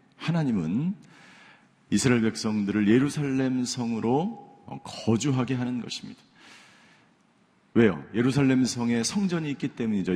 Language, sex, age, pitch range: Korean, male, 50-69, 110-150 Hz